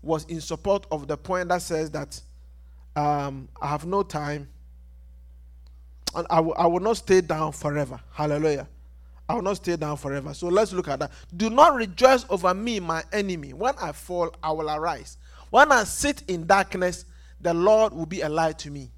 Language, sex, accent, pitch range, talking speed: English, male, Nigerian, 135-215 Hz, 190 wpm